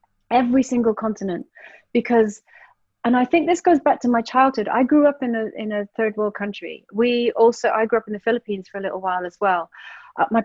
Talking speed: 225 wpm